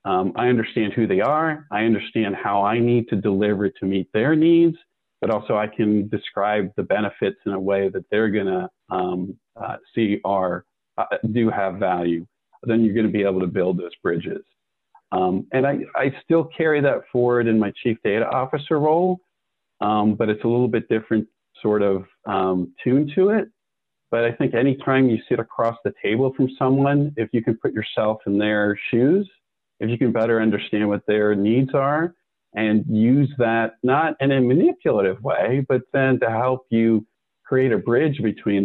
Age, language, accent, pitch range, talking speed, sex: 40-59, English, American, 100-125 Hz, 185 wpm, male